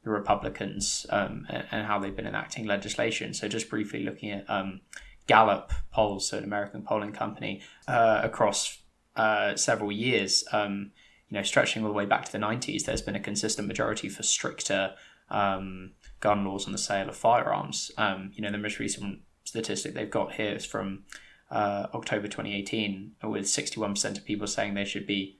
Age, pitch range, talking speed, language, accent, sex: 10-29, 100-110 Hz, 175 wpm, English, British, male